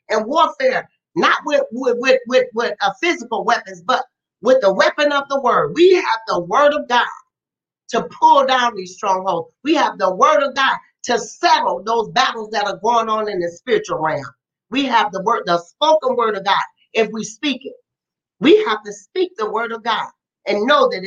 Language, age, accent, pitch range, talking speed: English, 40-59, American, 225-325 Hz, 200 wpm